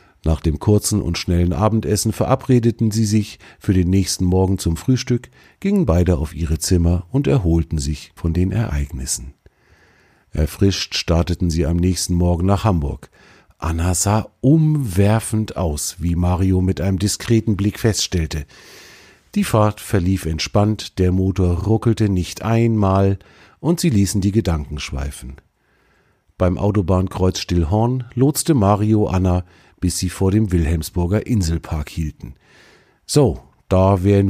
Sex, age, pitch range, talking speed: male, 50-69, 85-105 Hz, 135 wpm